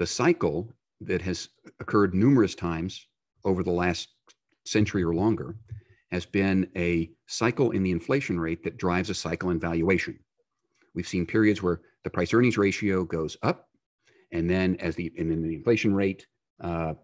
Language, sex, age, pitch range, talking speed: English, male, 50-69, 85-110 Hz, 160 wpm